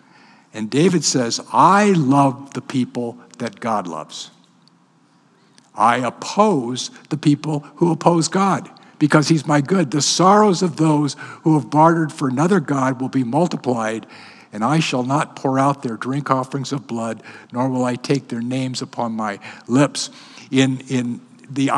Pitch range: 125-160 Hz